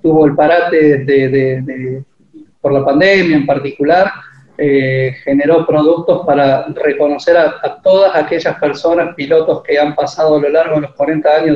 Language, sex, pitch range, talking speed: Spanish, male, 150-180 Hz, 170 wpm